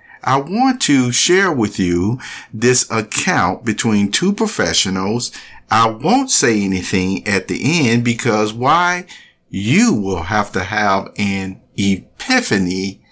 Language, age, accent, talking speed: English, 50-69, American, 125 wpm